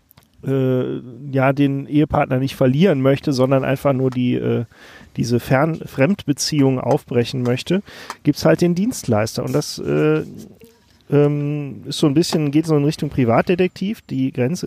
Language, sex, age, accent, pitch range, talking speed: German, male, 40-59, German, 135-160 Hz, 150 wpm